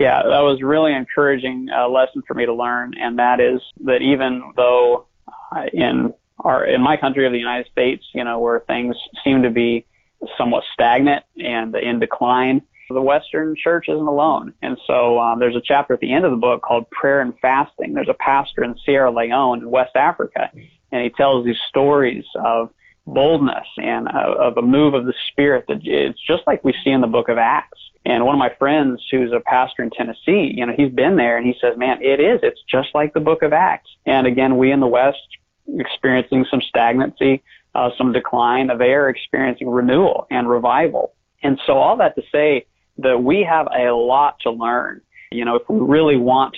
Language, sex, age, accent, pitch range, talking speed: English, male, 30-49, American, 120-135 Hz, 205 wpm